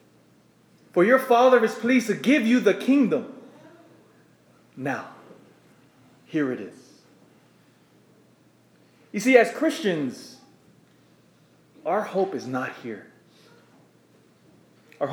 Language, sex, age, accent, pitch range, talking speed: English, male, 30-49, American, 180-240 Hz, 95 wpm